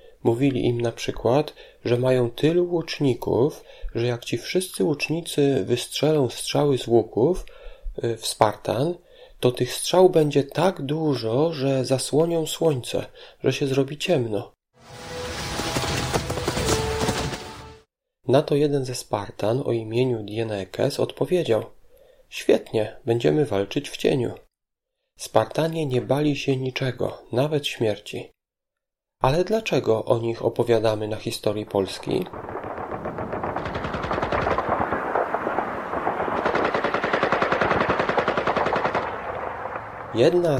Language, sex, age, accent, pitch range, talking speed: Polish, male, 30-49, native, 115-155 Hz, 90 wpm